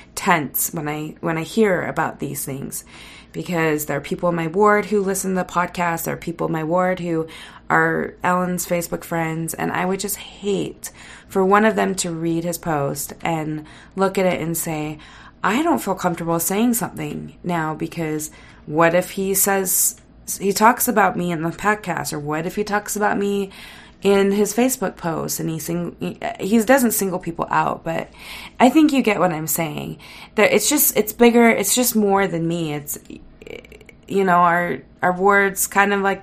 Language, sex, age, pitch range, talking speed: English, female, 30-49, 165-200 Hz, 190 wpm